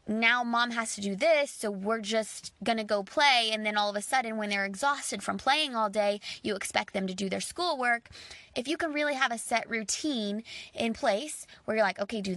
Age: 20-39